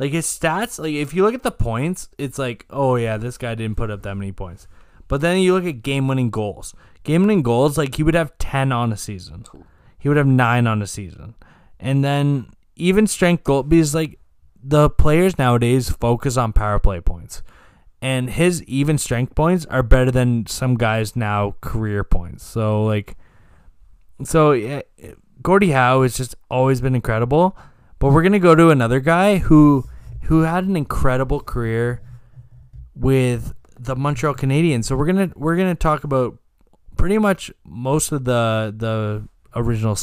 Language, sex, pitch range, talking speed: English, male, 110-150 Hz, 175 wpm